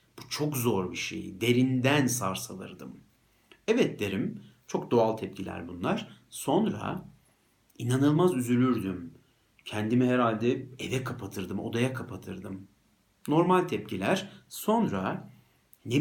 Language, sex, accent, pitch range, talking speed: Turkish, male, native, 105-145 Hz, 95 wpm